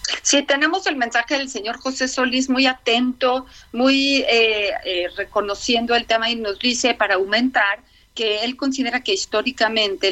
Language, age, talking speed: Spanish, 40-59, 155 wpm